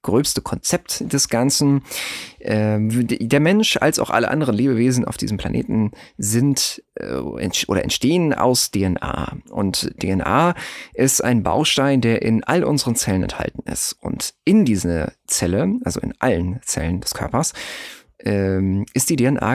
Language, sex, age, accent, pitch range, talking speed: German, male, 40-59, German, 100-135 Hz, 135 wpm